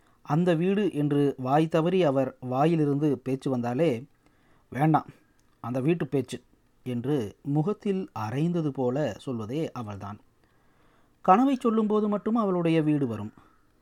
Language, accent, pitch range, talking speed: Tamil, native, 130-180 Hz, 110 wpm